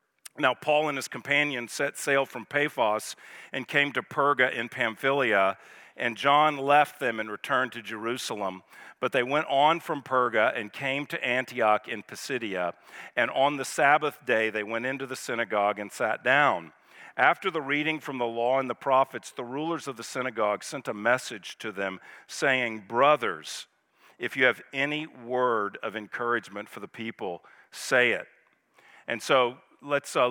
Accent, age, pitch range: American, 50-69, 115-140 Hz